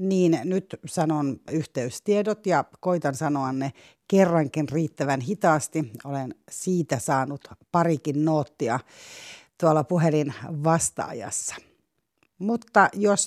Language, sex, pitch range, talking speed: Finnish, female, 140-200 Hz, 95 wpm